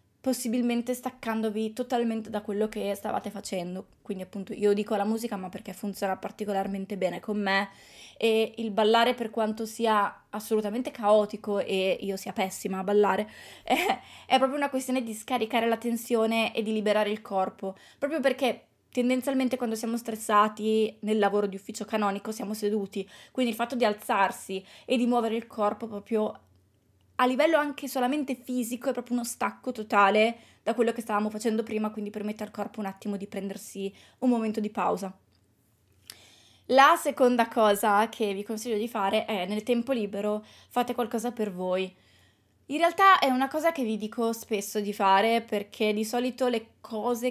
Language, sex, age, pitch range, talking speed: Italian, female, 20-39, 205-245 Hz, 170 wpm